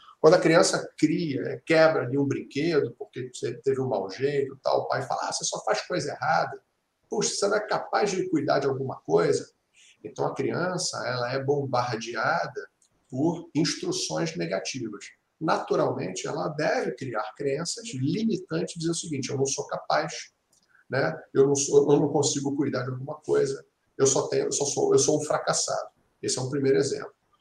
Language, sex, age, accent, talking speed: Portuguese, male, 50-69, Brazilian, 180 wpm